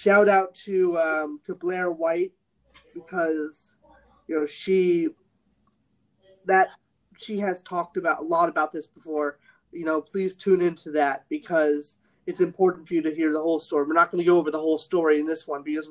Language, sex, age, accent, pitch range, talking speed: English, male, 20-39, American, 155-255 Hz, 190 wpm